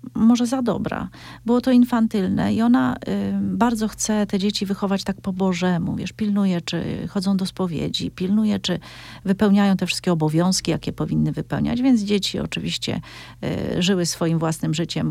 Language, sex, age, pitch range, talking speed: Polish, female, 40-59, 175-220 Hz, 145 wpm